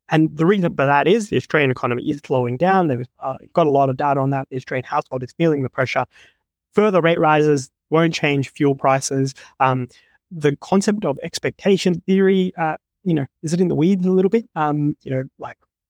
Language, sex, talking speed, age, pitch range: English, male, 210 wpm, 30-49, 135-175 Hz